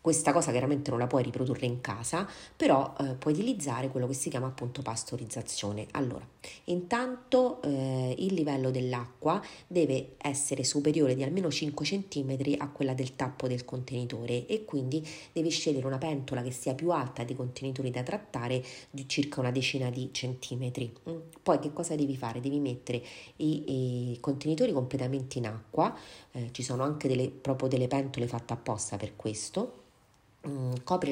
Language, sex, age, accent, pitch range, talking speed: Italian, female, 30-49, native, 125-155 Hz, 165 wpm